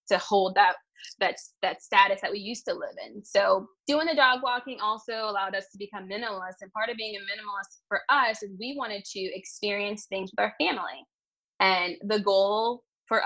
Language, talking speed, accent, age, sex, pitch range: English, 200 wpm, American, 20-39, female, 195-245 Hz